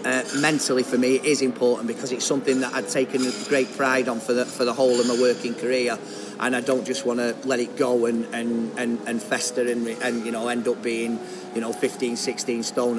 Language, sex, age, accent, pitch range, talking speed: English, male, 30-49, British, 120-135 Hz, 235 wpm